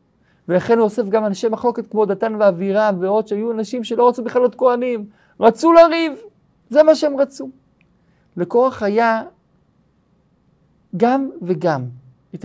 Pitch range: 165-220 Hz